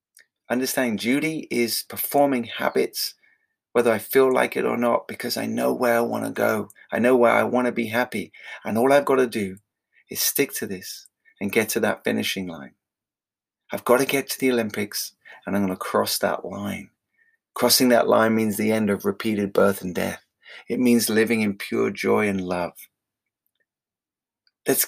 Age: 30-49